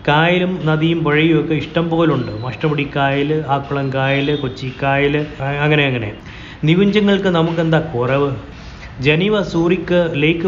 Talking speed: 105 wpm